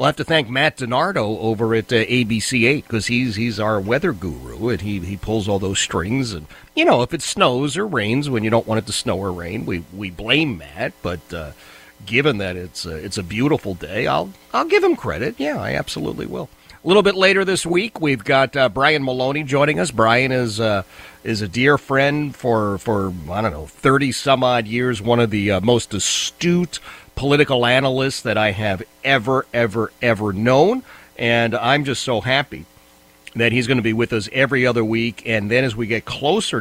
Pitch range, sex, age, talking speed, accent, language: 105-135 Hz, male, 40-59, 210 wpm, American, English